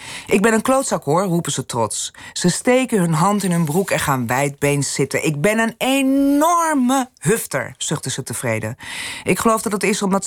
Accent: Dutch